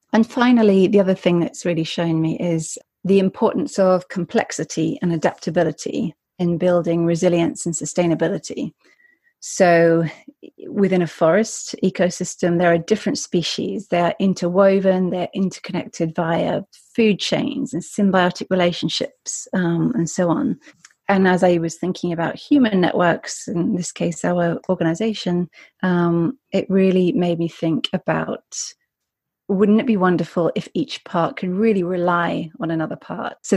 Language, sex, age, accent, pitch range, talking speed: English, female, 30-49, British, 170-195 Hz, 140 wpm